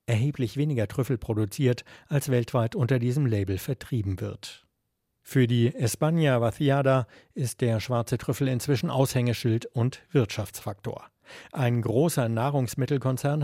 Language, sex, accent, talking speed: German, male, German, 115 wpm